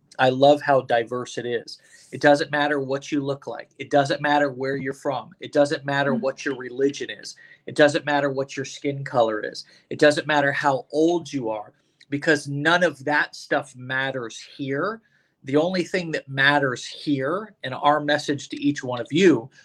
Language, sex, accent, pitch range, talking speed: English, male, American, 130-150 Hz, 190 wpm